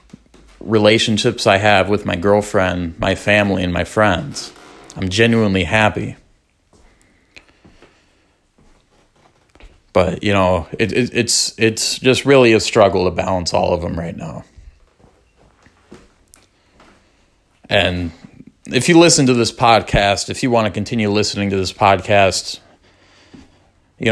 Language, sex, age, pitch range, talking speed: English, male, 30-49, 100-115 Hz, 115 wpm